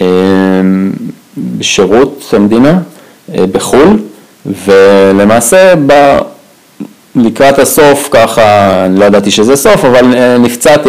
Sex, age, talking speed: male, 30-49, 70 wpm